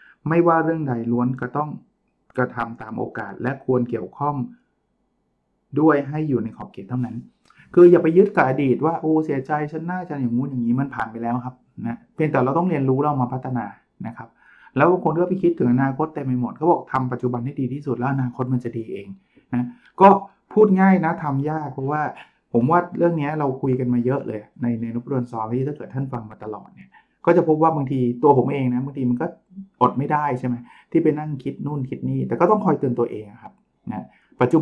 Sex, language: male, Thai